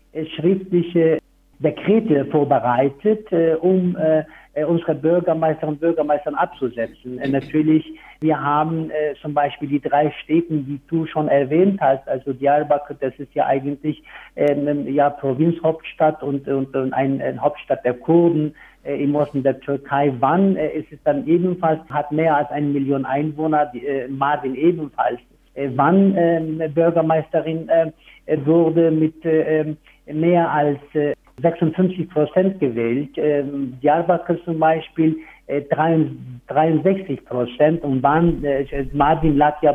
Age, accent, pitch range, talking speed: 60-79, German, 145-165 Hz, 125 wpm